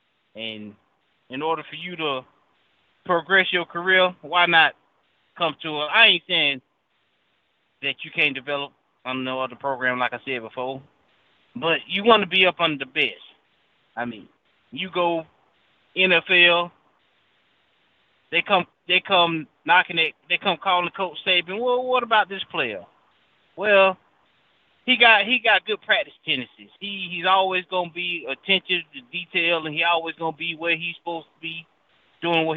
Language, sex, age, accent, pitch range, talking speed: English, male, 20-39, American, 145-185 Hz, 160 wpm